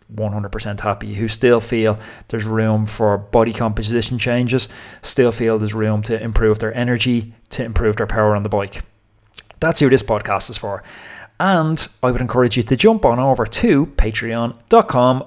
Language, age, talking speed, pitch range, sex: English, 30-49, 165 wpm, 110-120 Hz, male